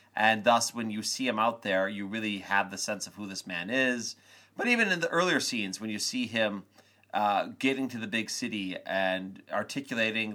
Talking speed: 210 wpm